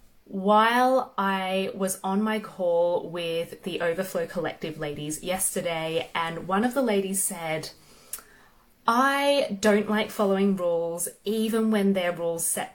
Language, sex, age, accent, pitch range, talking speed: English, female, 20-39, Australian, 175-215 Hz, 130 wpm